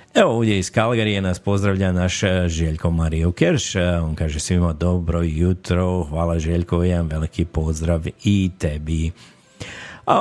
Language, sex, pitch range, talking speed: Croatian, male, 85-100 Hz, 130 wpm